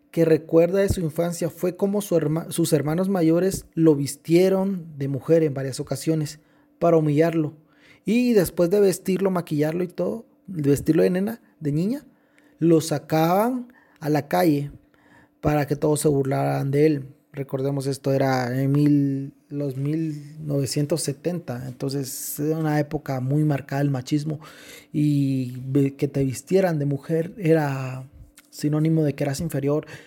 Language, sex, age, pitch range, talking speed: Spanish, male, 30-49, 140-175 Hz, 145 wpm